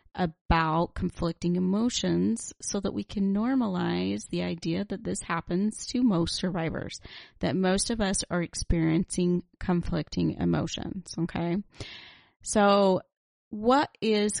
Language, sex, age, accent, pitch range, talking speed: English, female, 30-49, American, 170-205 Hz, 115 wpm